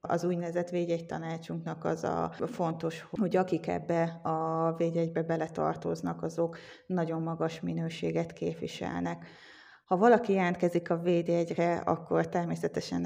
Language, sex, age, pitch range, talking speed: Hungarian, female, 20-39, 160-175 Hz, 115 wpm